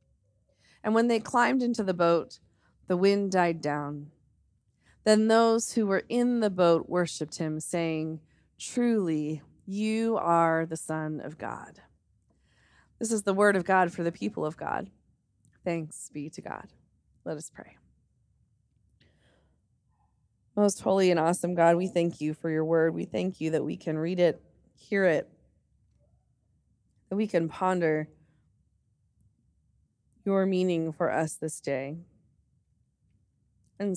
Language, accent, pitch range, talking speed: English, American, 155-185 Hz, 140 wpm